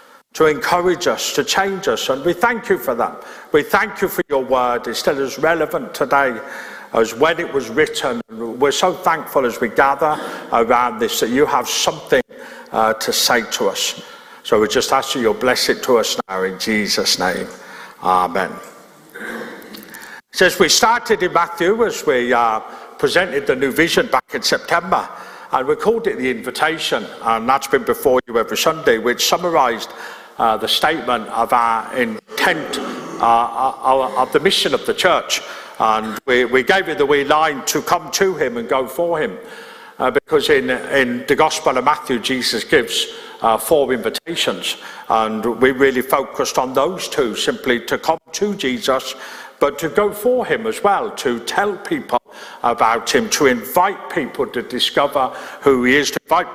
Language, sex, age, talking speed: English, male, 50-69, 175 wpm